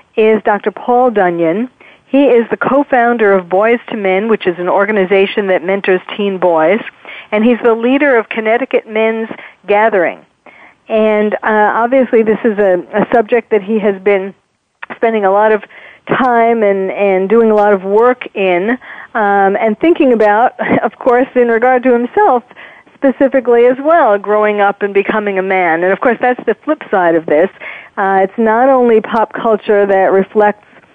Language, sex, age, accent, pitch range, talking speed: English, female, 50-69, American, 195-245 Hz, 175 wpm